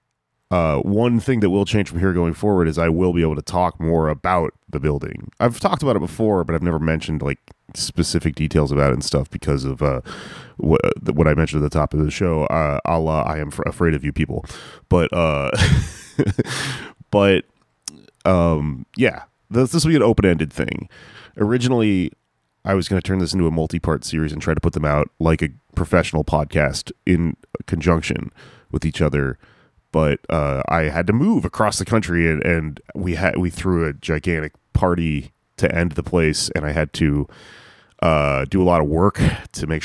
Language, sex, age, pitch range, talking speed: English, male, 30-49, 75-95 Hz, 195 wpm